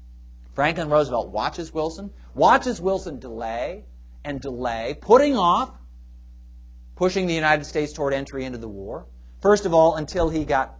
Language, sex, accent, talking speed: English, male, American, 145 wpm